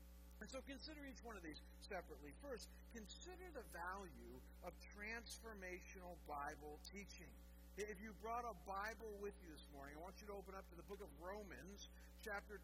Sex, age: male, 50-69